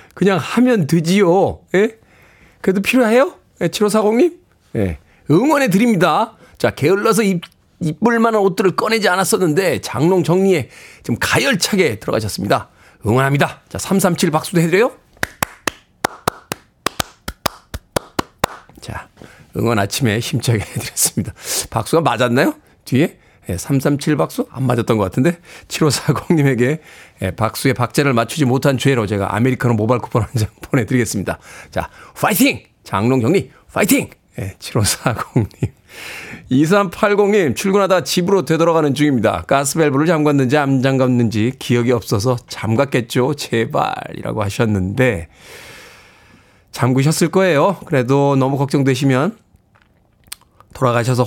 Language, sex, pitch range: Korean, male, 120-180 Hz